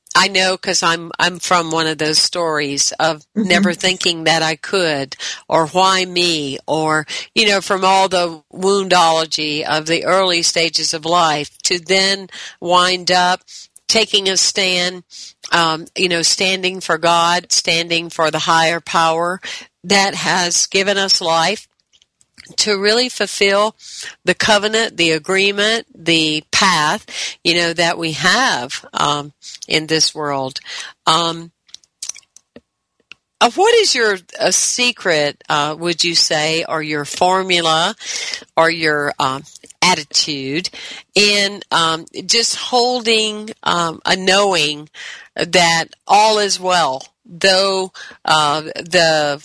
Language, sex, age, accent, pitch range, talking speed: English, female, 50-69, American, 160-195 Hz, 125 wpm